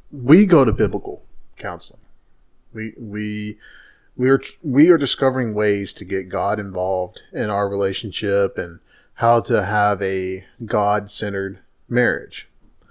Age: 30-49